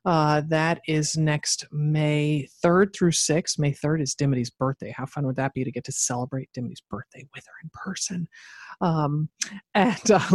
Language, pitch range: English, 140-170 Hz